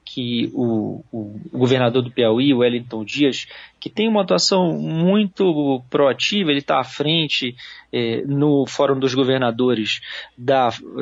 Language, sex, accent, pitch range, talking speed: Portuguese, male, Brazilian, 120-150 Hz, 135 wpm